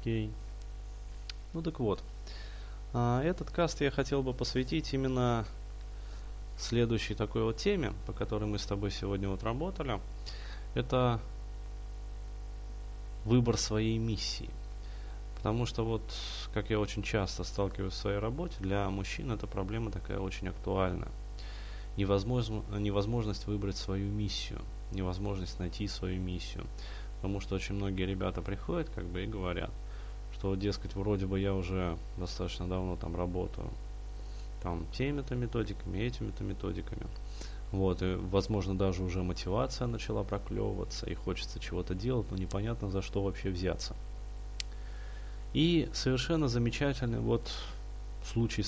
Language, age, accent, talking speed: Russian, 20-39, native, 125 wpm